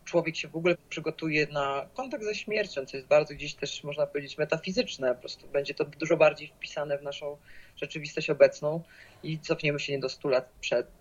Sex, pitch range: female, 140-170 Hz